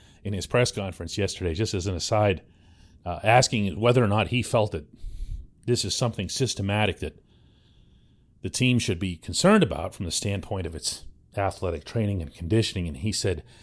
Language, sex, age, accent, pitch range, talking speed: English, male, 40-59, American, 90-120 Hz, 175 wpm